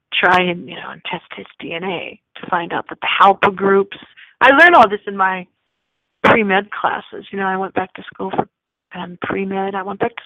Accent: American